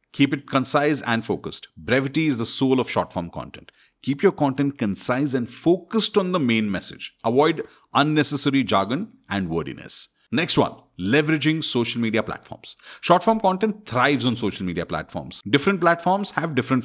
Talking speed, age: 155 wpm, 40-59